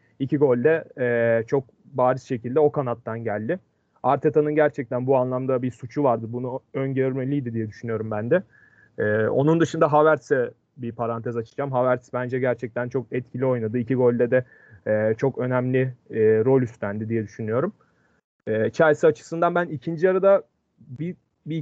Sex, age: male, 30-49